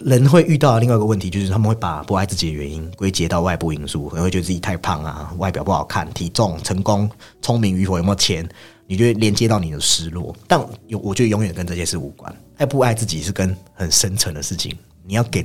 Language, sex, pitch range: Chinese, male, 90-125 Hz